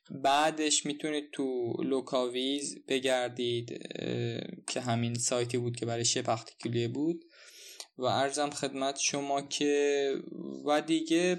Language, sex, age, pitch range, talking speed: Persian, male, 20-39, 120-150 Hz, 105 wpm